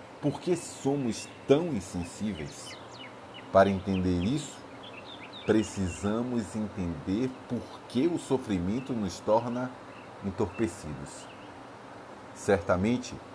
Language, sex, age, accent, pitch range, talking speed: Portuguese, male, 40-59, Brazilian, 90-115 Hz, 80 wpm